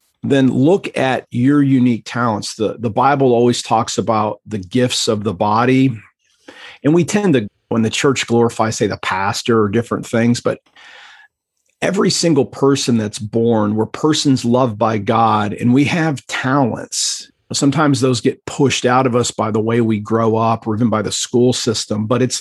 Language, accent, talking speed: English, American, 180 wpm